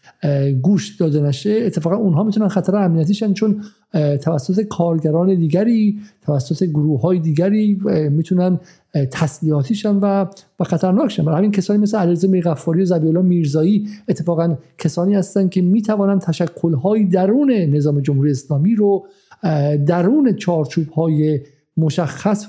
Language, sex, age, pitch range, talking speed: Persian, male, 50-69, 150-195 Hz, 125 wpm